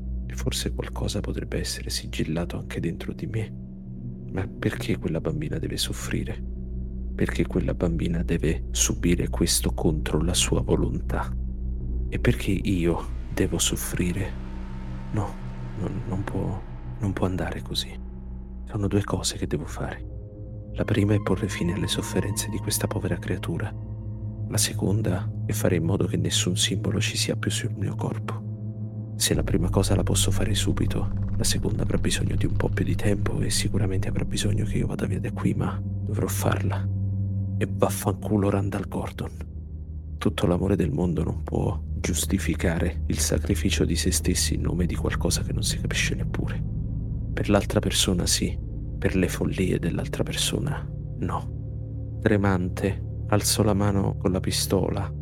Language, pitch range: Italian, 85-105 Hz